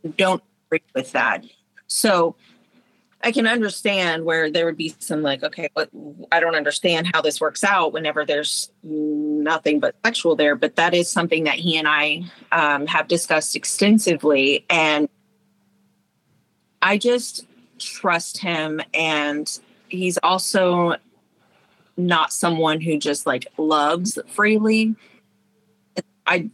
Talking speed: 130 wpm